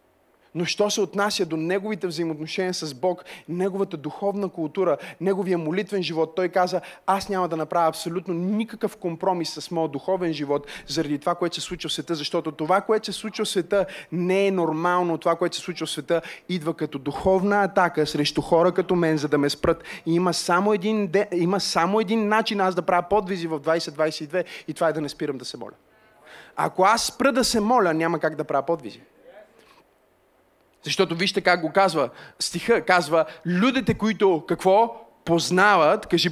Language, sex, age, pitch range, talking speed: Bulgarian, male, 30-49, 170-225 Hz, 175 wpm